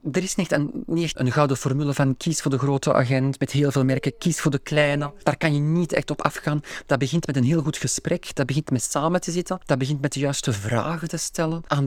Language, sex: Dutch, male